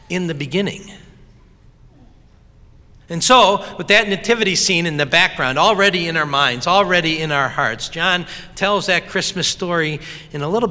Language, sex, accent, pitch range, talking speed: English, male, American, 140-210 Hz, 155 wpm